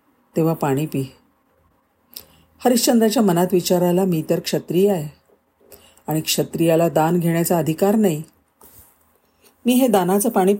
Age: 40-59